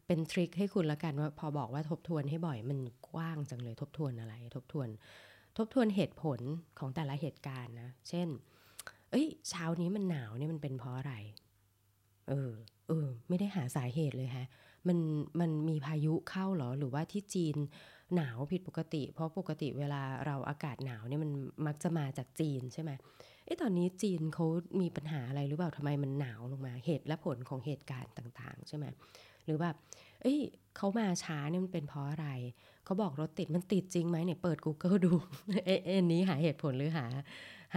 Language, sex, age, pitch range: Thai, female, 20-39, 135-175 Hz